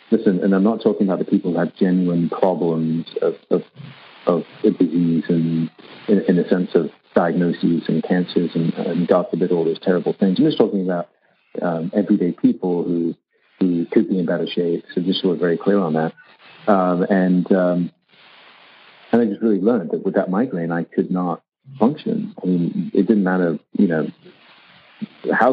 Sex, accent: male, American